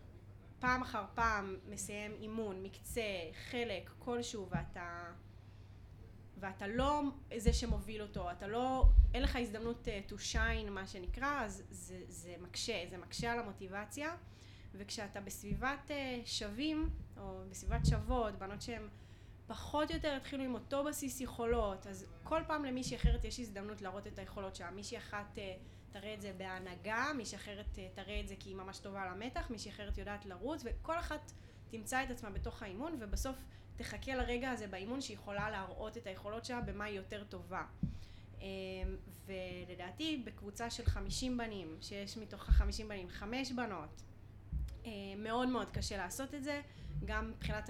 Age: 20-39